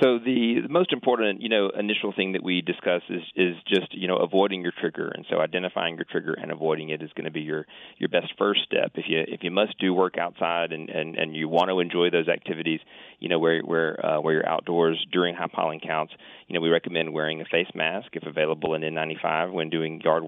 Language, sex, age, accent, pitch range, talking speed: English, male, 30-49, American, 80-90 Hz, 245 wpm